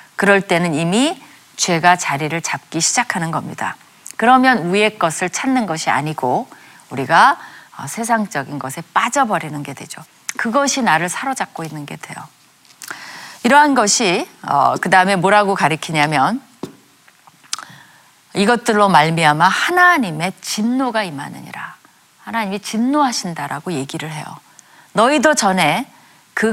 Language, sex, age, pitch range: Korean, female, 30-49, 170-240 Hz